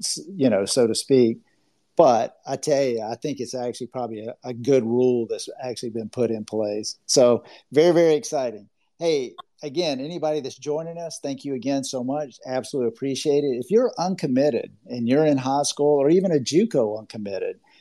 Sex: male